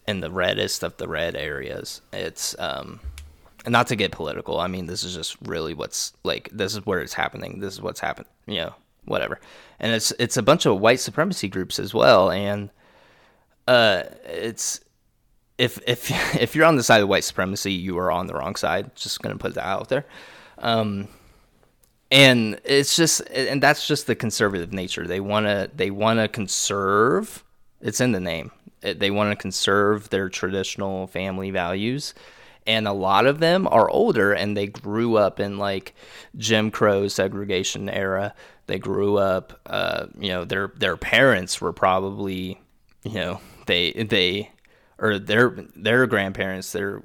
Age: 20-39